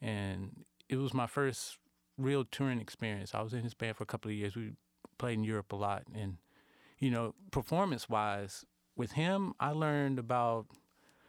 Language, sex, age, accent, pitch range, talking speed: English, male, 30-49, American, 105-135 Hz, 175 wpm